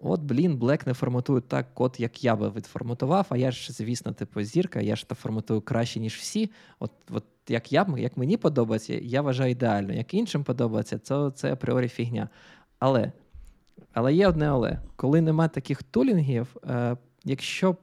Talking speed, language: 170 wpm, Ukrainian